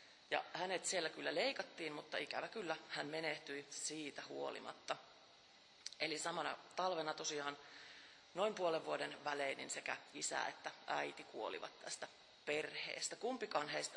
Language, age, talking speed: Finnish, 30-49, 130 wpm